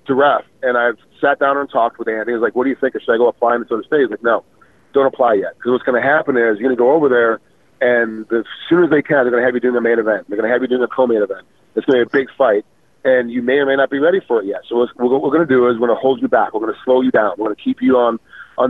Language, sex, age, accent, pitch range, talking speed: English, male, 40-59, American, 120-140 Hz, 355 wpm